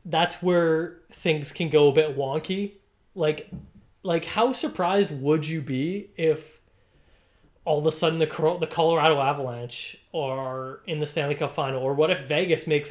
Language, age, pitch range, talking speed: English, 20-39, 130-160 Hz, 160 wpm